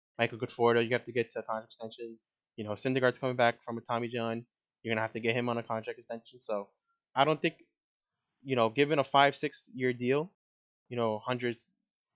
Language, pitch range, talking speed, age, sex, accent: English, 115-135 Hz, 220 wpm, 20-39, male, American